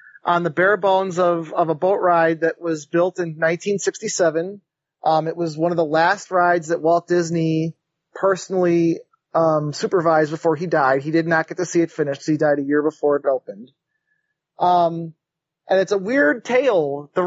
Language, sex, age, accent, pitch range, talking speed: English, male, 30-49, American, 165-200 Hz, 190 wpm